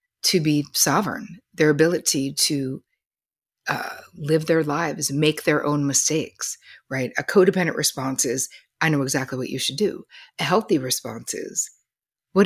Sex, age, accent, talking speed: female, 50-69, American, 150 wpm